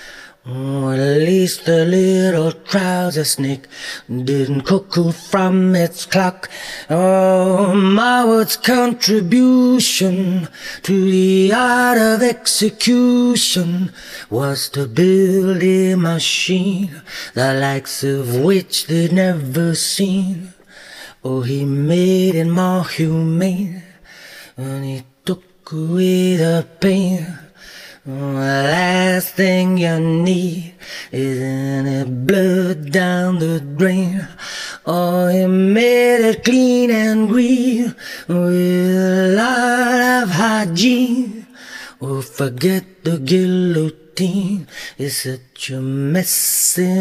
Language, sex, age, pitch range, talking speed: English, male, 30-49, 160-190 Hz, 95 wpm